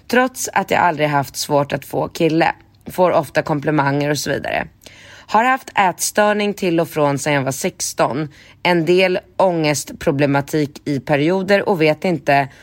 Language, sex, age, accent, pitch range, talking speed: Swedish, female, 30-49, native, 145-180 Hz, 155 wpm